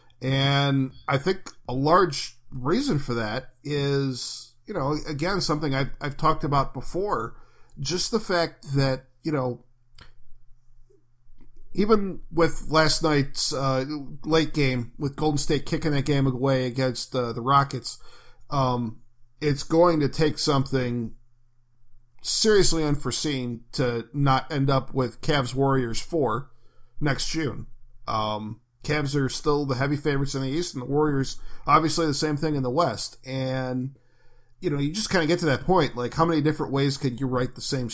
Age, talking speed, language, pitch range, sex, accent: 40-59, 160 wpm, English, 120-150 Hz, male, American